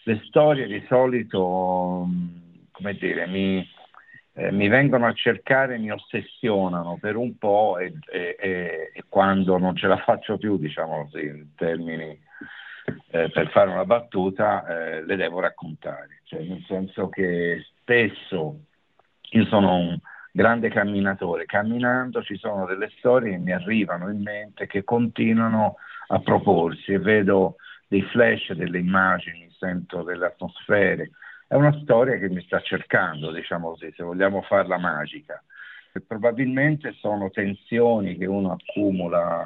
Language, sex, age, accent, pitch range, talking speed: Italian, male, 50-69, native, 90-115 Hz, 140 wpm